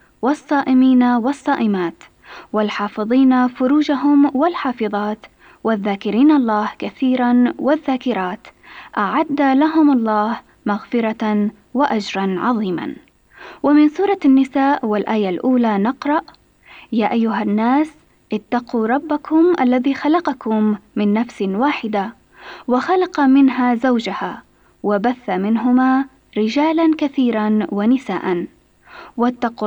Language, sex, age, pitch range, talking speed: Arabic, female, 20-39, 220-285 Hz, 80 wpm